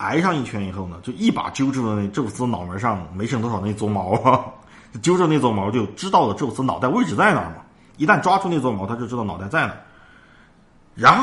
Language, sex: Chinese, male